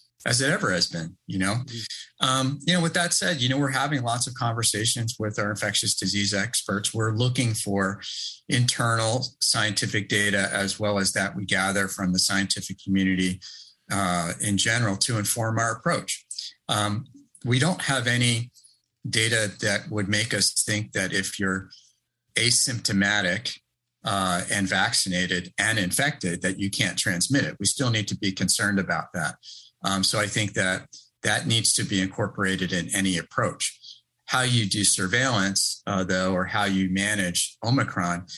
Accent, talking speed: American, 165 wpm